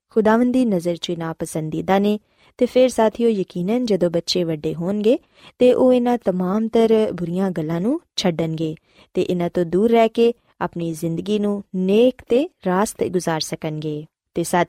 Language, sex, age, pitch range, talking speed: Punjabi, female, 20-39, 175-240 Hz, 145 wpm